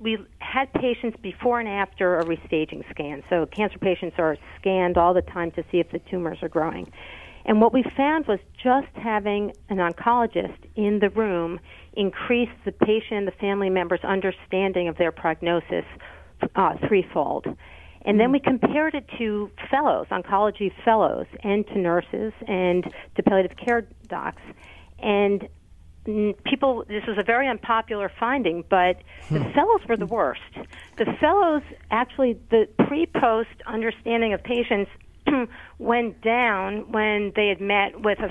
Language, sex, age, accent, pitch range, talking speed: English, female, 50-69, American, 180-230 Hz, 150 wpm